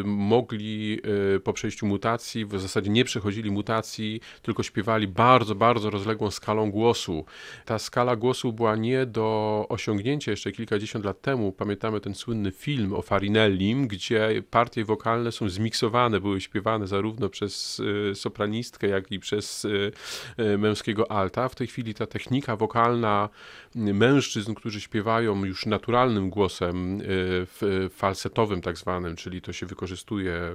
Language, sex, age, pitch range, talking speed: Polish, male, 30-49, 100-115 Hz, 135 wpm